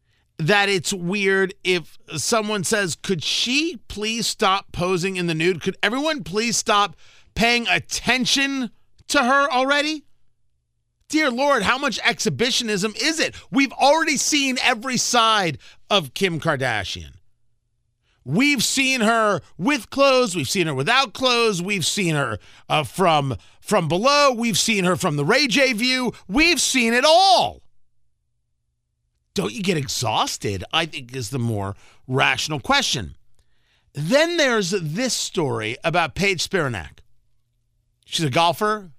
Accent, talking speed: American, 135 wpm